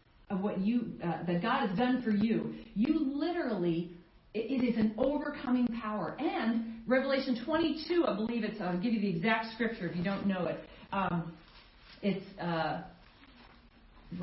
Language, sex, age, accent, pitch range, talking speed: English, female, 40-59, American, 200-280 Hz, 160 wpm